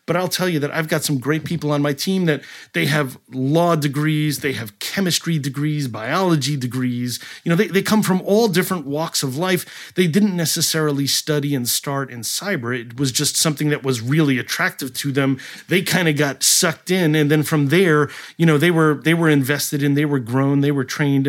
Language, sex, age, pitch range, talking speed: English, male, 30-49, 140-170 Hz, 215 wpm